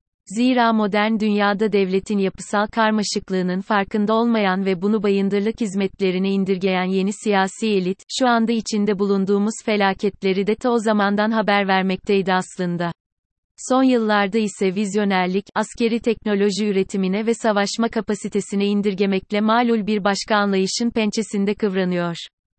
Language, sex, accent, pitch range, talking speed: Turkish, female, native, 190-220 Hz, 120 wpm